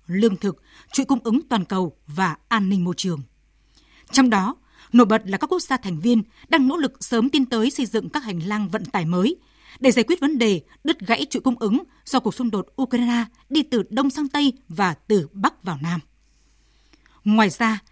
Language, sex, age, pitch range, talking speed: Vietnamese, female, 20-39, 200-275 Hz, 210 wpm